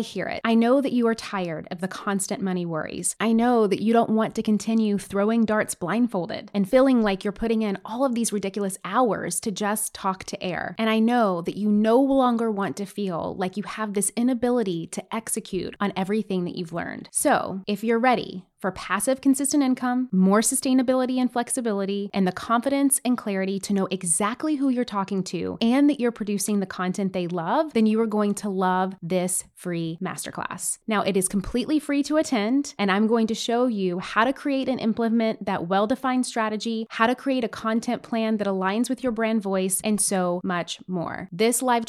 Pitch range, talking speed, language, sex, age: 195-240 Hz, 205 wpm, English, female, 20-39